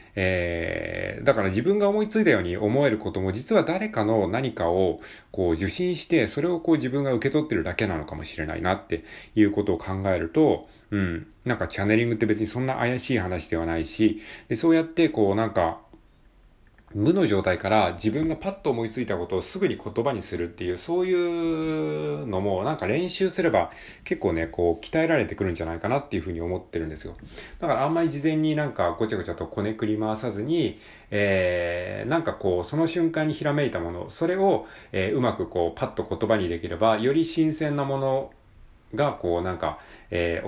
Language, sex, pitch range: Japanese, male, 90-135 Hz